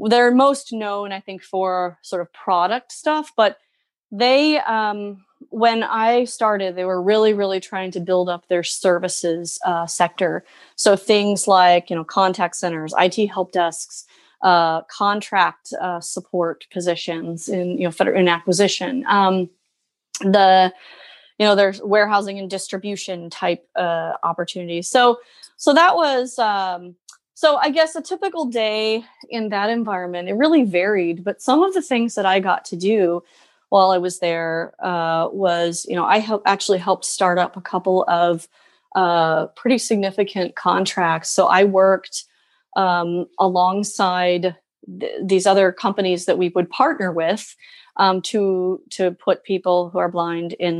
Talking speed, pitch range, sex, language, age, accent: 150 wpm, 175-210 Hz, female, English, 30-49, American